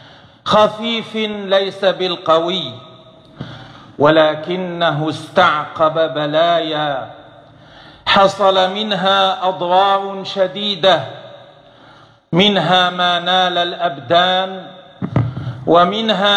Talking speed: 55 wpm